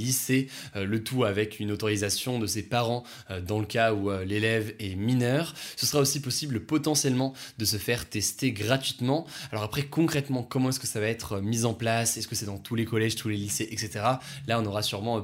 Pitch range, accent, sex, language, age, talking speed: 110-140 Hz, French, male, French, 20-39, 210 wpm